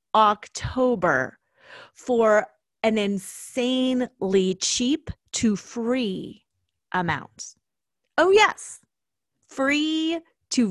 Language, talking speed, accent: English, 65 wpm, American